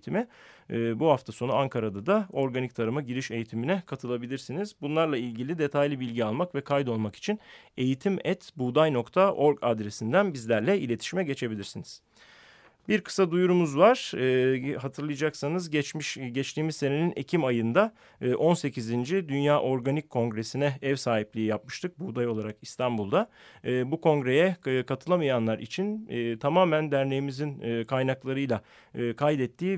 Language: Turkish